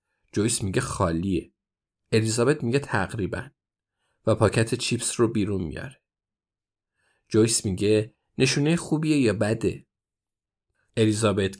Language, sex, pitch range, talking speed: Persian, male, 100-130 Hz, 100 wpm